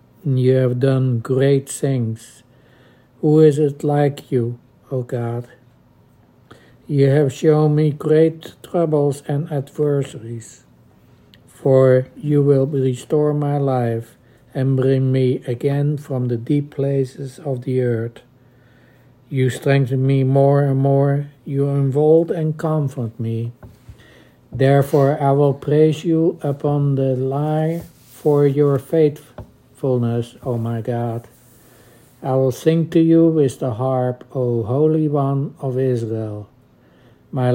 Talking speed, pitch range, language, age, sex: 125 wpm, 125-145 Hz, English, 60-79, male